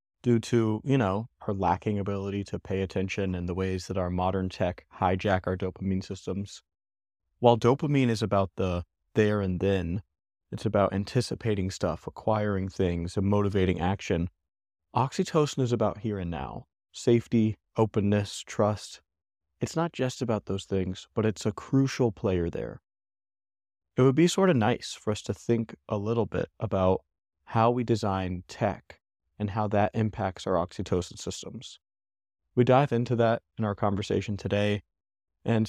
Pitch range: 95-115 Hz